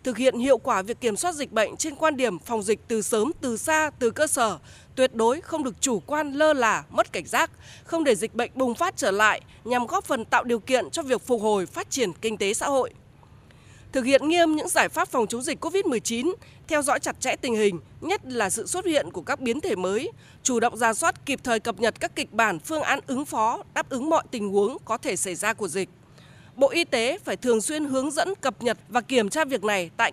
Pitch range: 220-300 Hz